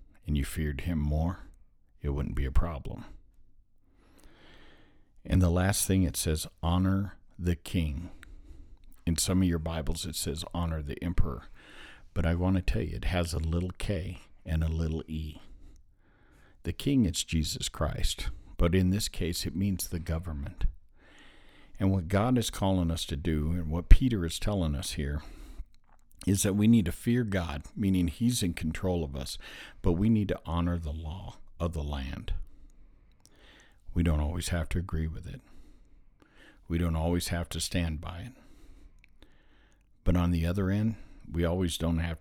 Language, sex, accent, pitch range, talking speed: English, male, American, 80-95 Hz, 170 wpm